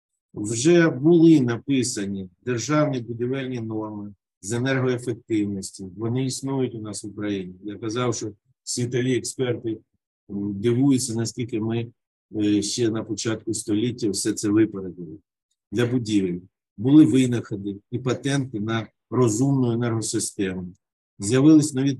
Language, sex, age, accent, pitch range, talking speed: Ukrainian, male, 50-69, native, 105-130 Hz, 110 wpm